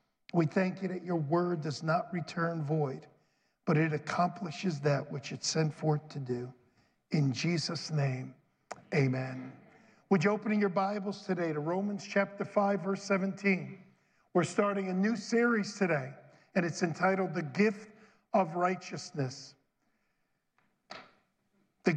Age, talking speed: 50-69, 135 wpm